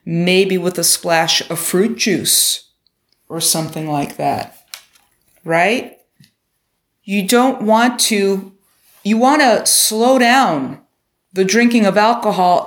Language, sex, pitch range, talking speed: English, female, 175-235 Hz, 115 wpm